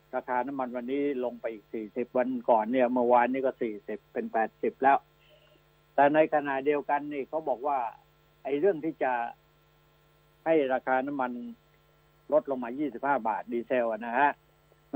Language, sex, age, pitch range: Thai, male, 60-79, 125-150 Hz